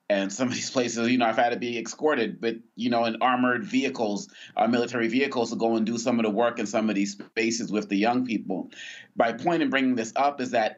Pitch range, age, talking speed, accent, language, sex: 120-150 Hz, 30-49, 255 wpm, American, English, male